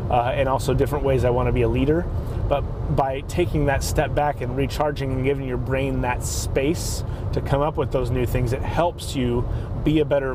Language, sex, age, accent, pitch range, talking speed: English, male, 30-49, American, 115-145 Hz, 220 wpm